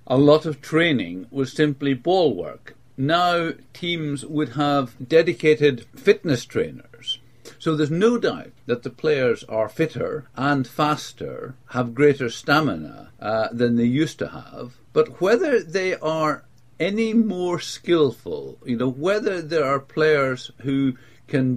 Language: English